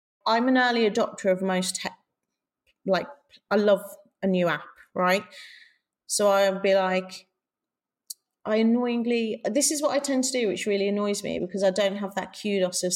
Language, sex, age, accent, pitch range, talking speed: English, female, 30-49, British, 190-245 Hz, 175 wpm